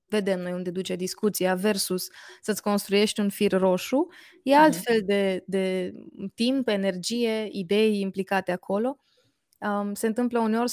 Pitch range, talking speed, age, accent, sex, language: 195-230 Hz, 130 wpm, 20-39, native, female, Romanian